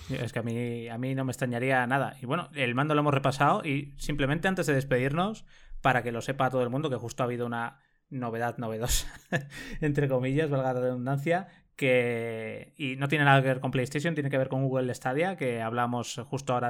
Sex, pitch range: male, 125-155 Hz